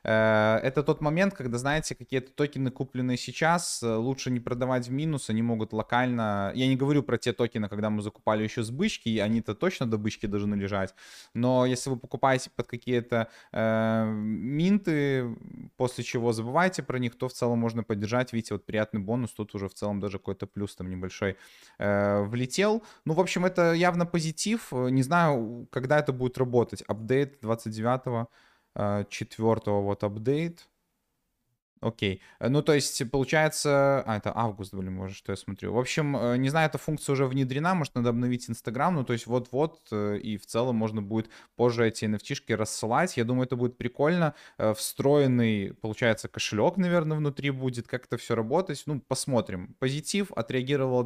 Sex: male